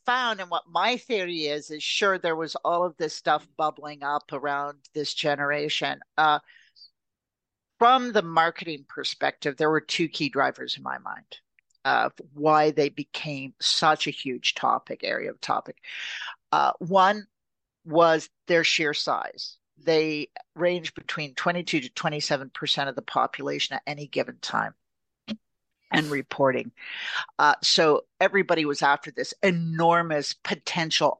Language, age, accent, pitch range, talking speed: English, 50-69, American, 150-190 Hz, 140 wpm